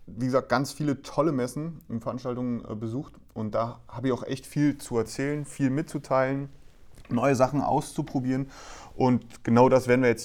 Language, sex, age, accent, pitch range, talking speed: German, male, 30-49, German, 110-135 Hz, 175 wpm